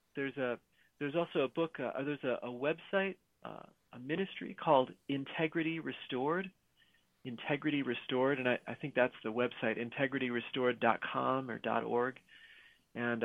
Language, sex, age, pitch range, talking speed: English, male, 40-59, 115-145 Hz, 140 wpm